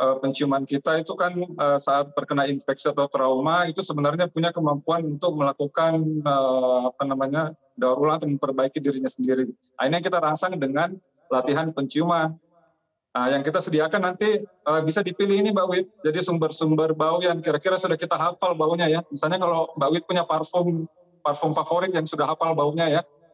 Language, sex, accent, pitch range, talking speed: Indonesian, male, native, 145-175 Hz, 160 wpm